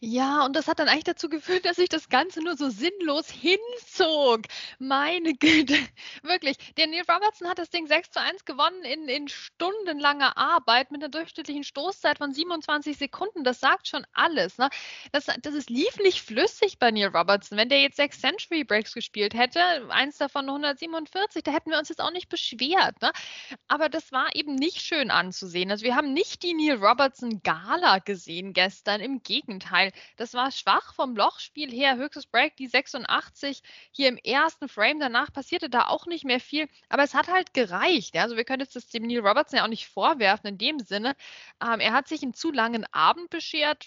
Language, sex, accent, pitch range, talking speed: German, female, German, 245-320 Hz, 190 wpm